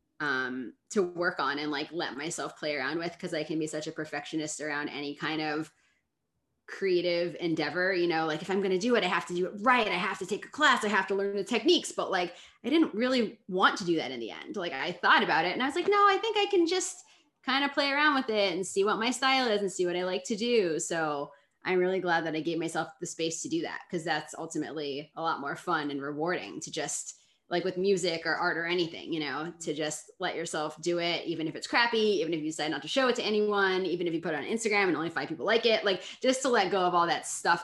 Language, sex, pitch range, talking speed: English, female, 160-225 Hz, 275 wpm